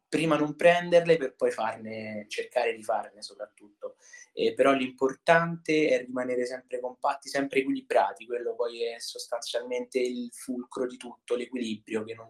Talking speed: 145 wpm